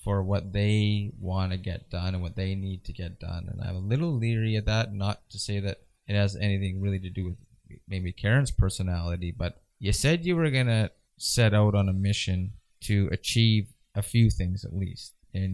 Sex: male